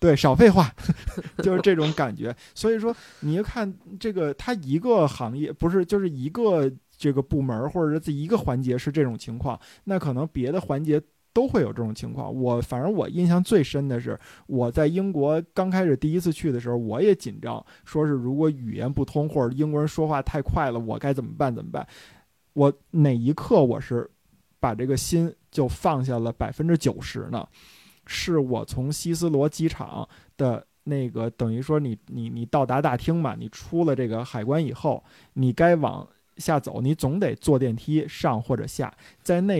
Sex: male